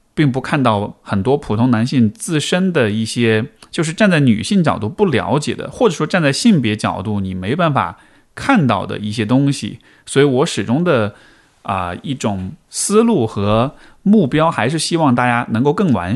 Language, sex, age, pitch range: Chinese, male, 20-39, 110-150 Hz